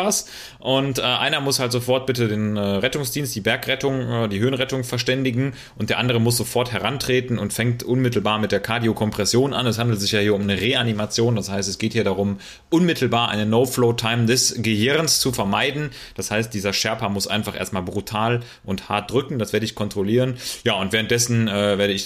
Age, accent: 30-49, German